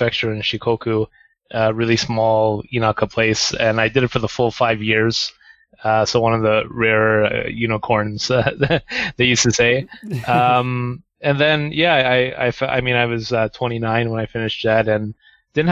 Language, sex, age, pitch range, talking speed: English, male, 20-39, 110-125 Hz, 195 wpm